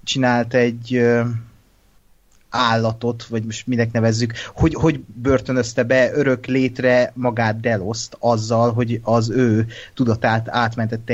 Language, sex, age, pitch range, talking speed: Hungarian, male, 30-49, 115-125 Hz, 115 wpm